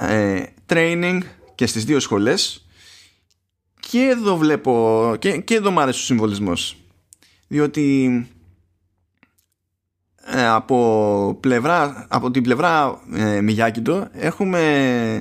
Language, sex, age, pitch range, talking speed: Greek, male, 20-39, 95-140 Hz, 100 wpm